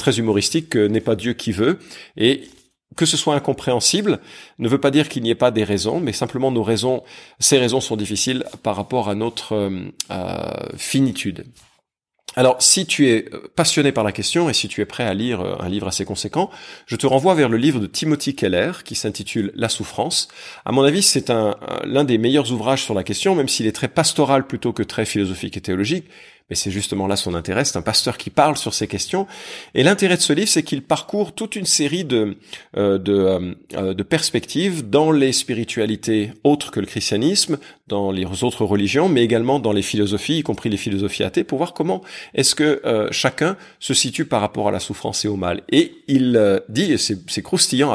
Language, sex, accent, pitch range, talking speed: French, male, French, 105-140 Hz, 215 wpm